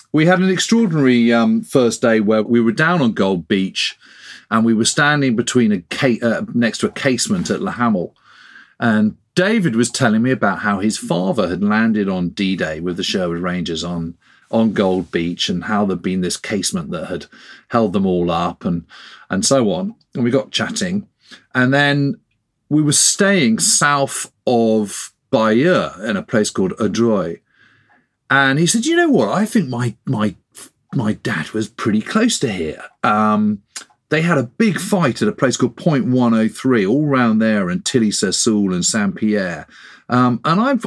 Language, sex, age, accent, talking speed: English, male, 40-59, British, 185 wpm